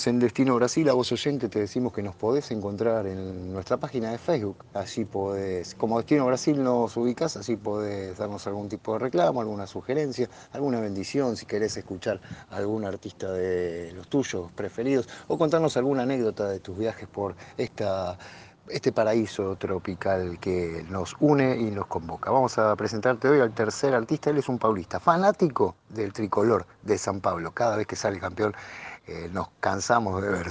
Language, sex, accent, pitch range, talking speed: Spanish, male, Argentinian, 95-125 Hz, 175 wpm